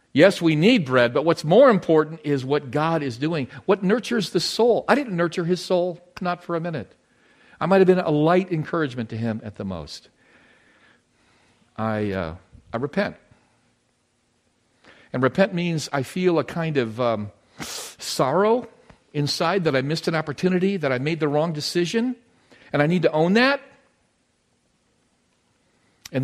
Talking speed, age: 160 wpm, 50-69